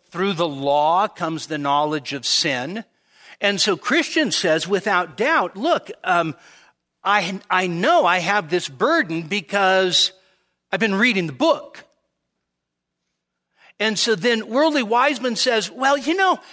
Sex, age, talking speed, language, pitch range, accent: male, 50-69, 140 wpm, English, 175-290 Hz, American